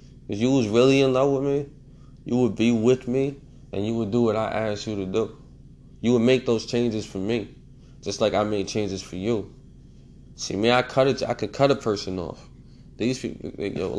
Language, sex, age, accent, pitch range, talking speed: English, male, 20-39, American, 110-130 Hz, 240 wpm